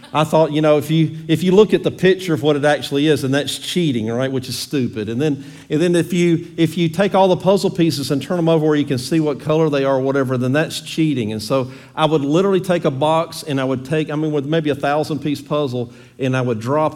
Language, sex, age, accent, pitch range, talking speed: English, male, 50-69, American, 135-165 Hz, 270 wpm